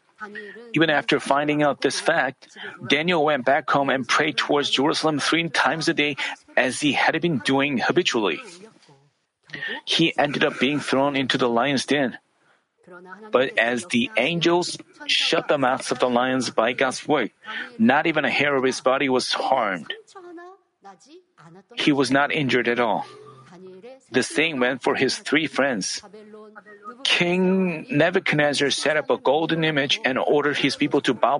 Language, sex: Korean, male